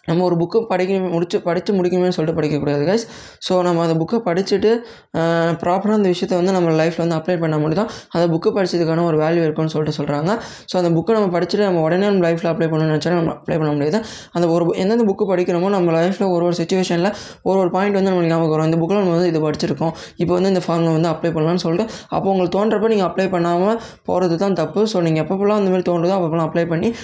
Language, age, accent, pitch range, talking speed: Tamil, 20-39, native, 165-190 Hz, 215 wpm